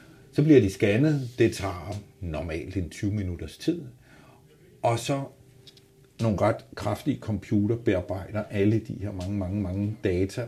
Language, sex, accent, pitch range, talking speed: Danish, male, native, 100-130 Hz, 145 wpm